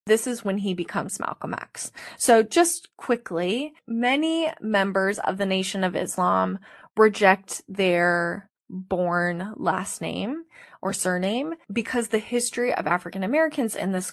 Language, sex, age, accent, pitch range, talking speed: English, female, 20-39, American, 185-230 Hz, 135 wpm